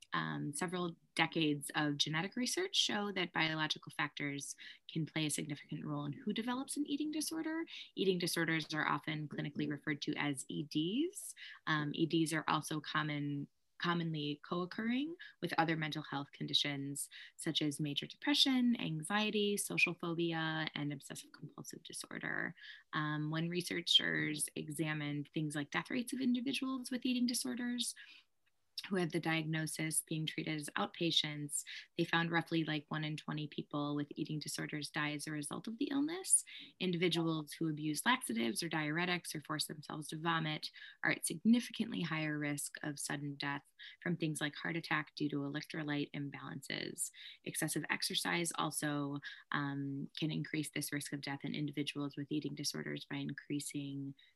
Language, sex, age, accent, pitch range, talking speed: English, female, 20-39, American, 145-180 Hz, 150 wpm